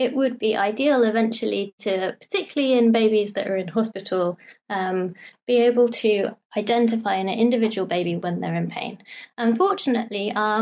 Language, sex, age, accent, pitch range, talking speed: English, female, 20-39, British, 195-235 Hz, 155 wpm